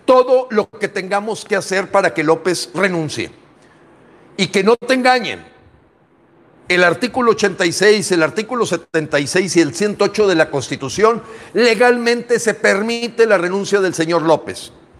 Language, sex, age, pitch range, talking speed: English, male, 50-69, 160-215 Hz, 140 wpm